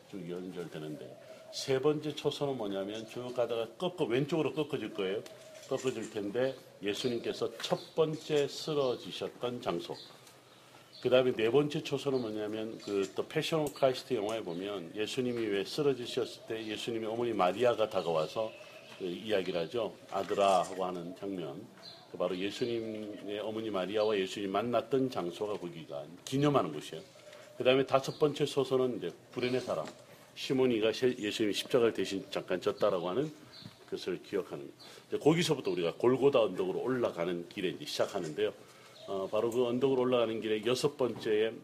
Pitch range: 105-140 Hz